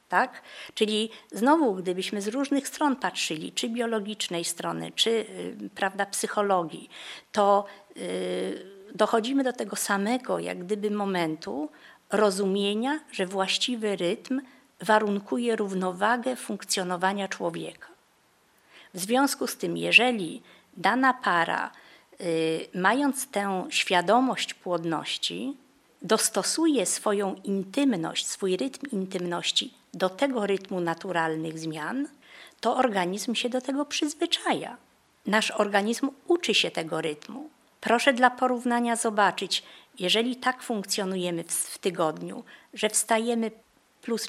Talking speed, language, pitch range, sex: 105 wpm, Polish, 190-255 Hz, female